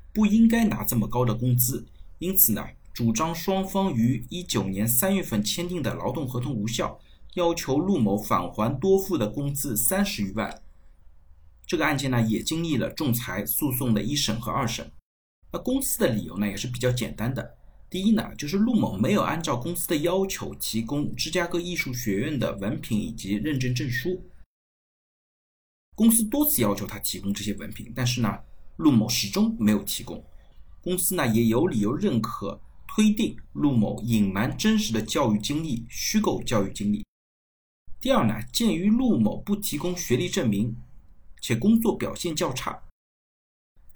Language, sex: Chinese, male